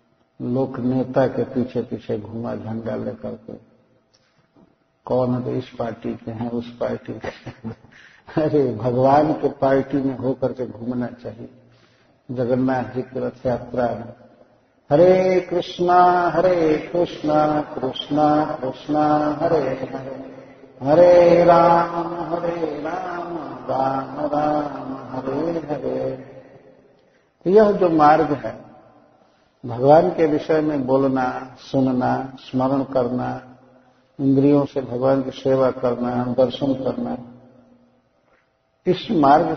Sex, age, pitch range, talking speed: male, 50-69, 120-150 Hz, 105 wpm